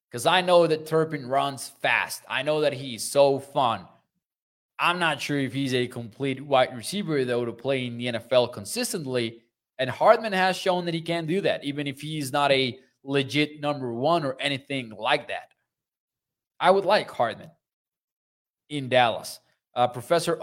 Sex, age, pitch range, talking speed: male, 20-39, 130-190 Hz, 170 wpm